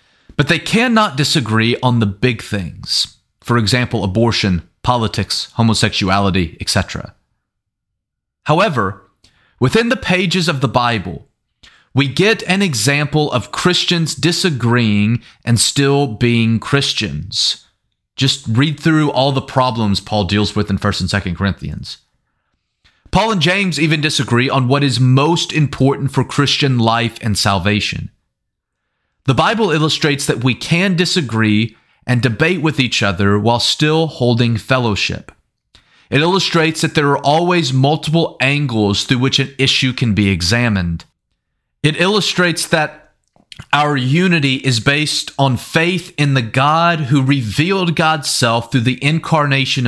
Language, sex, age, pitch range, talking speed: English, male, 30-49, 110-155 Hz, 135 wpm